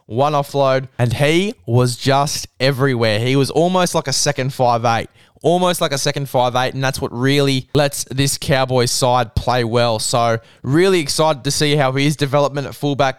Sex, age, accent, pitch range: male, 10-29, Australian, 120-140 Hz